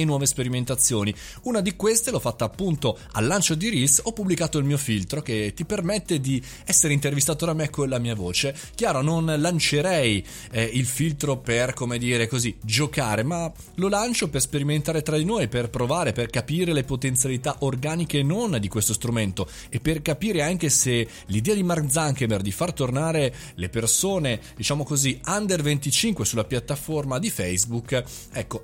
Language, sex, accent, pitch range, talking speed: Italian, male, native, 120-170 Hz, 170 wpm